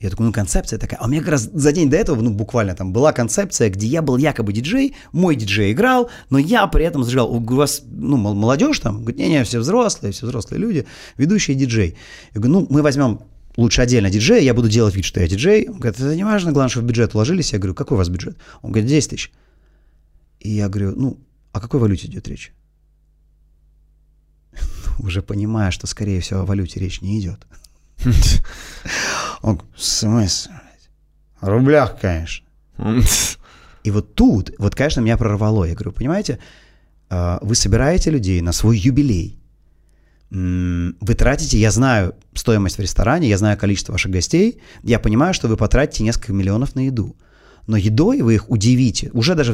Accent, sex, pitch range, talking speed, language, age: native, male, 95-135 Hz, 180 wpm, Russian, 30-49